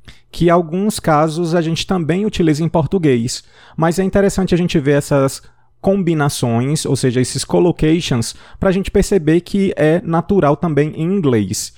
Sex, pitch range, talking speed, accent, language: male, 125-165 Hz, 165 wpm, Brazilian, Portuguese